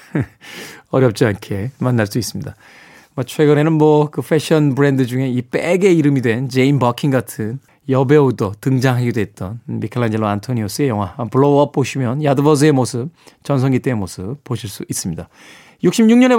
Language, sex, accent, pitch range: Korean, male, native, 125-170 Hz